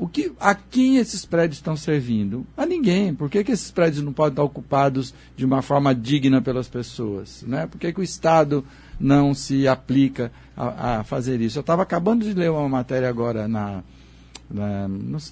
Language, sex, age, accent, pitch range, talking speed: Portuguese, male, 60-79, Brazilian, 125-175 Hz, 190 wpm